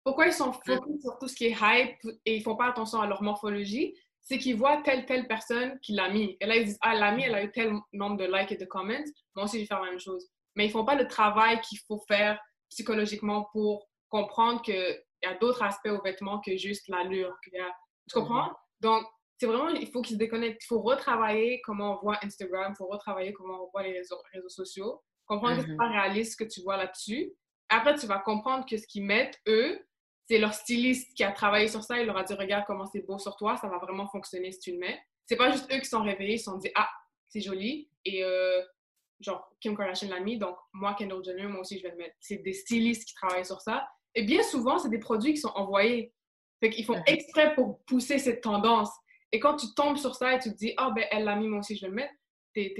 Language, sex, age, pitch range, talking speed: French, female, 20-39, 195-240 Hz, 265 wpm